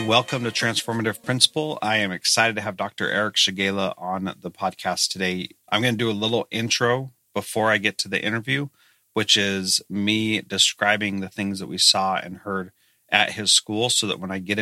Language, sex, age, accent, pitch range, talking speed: English, male, 30-49, American, 95-110 Hz, 195 wpm